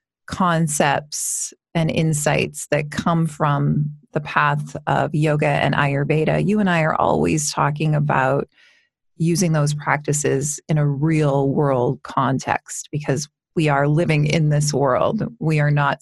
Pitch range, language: 145-175 Hz, English